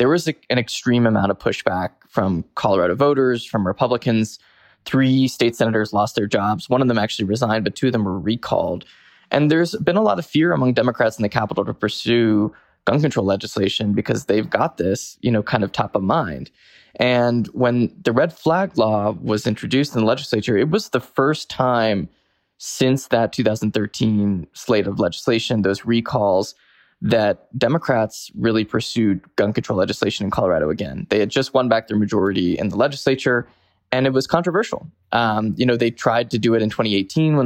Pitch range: 105-130 Hz